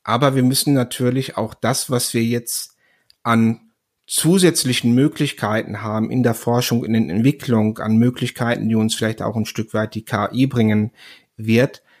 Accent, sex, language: German, male, German